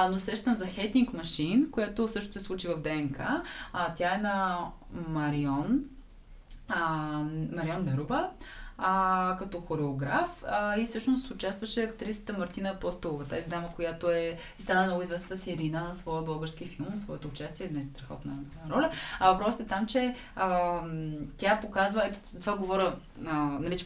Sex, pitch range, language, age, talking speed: female, 170-215 Hz, Bulgarian, 20-39, 165 wpm